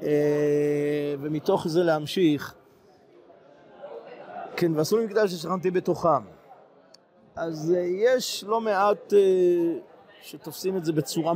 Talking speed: 105 wpm